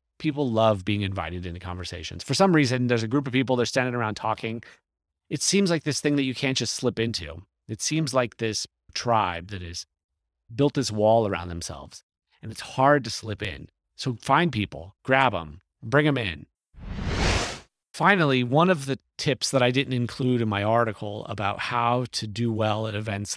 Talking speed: 190 wpm